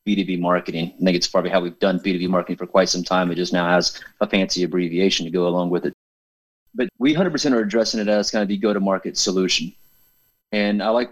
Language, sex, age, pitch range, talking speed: English, male, 30-49, 90-100 Hz, 225 wpm